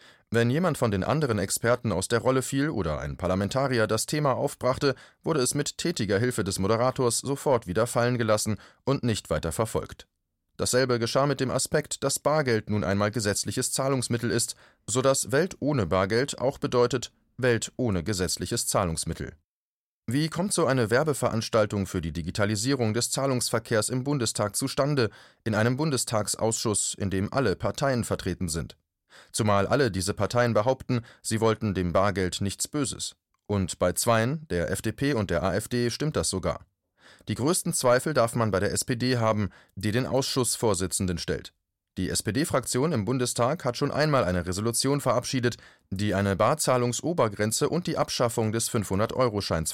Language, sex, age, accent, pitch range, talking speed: German, male, 30-49, German, 100-130 Hz, 155 wpm